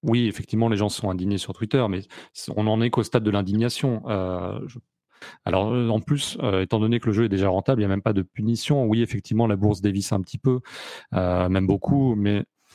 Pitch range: 100-120 Hz